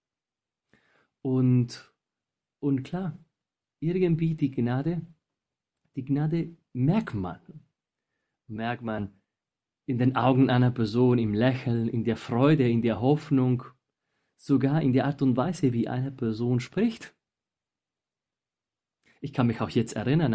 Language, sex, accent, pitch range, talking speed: German, male, German, 115-145 Hz, 120 wpm